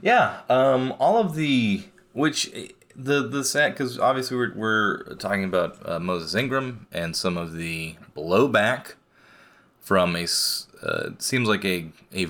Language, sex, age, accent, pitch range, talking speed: English, male, 30-49, American, 95-125 Hz, 145 wpm